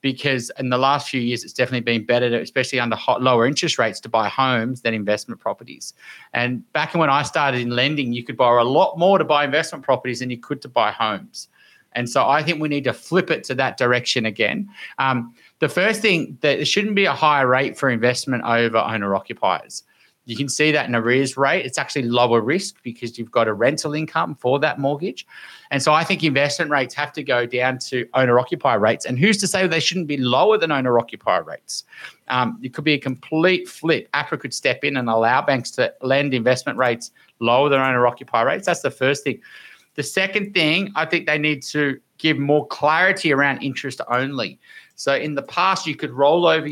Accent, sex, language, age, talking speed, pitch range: Australian, male, English, 30-49, 210 wpm, 125-155 Hz